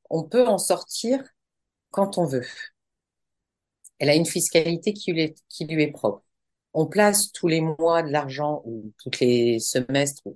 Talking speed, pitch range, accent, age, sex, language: 155 wpm, 145-205 Hz, French, 50-69, female, French